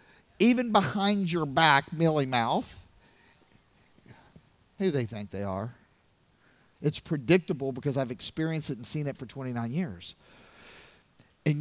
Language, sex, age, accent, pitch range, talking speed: English, male, 50-69, American, 155-245 Hz, 125 wpm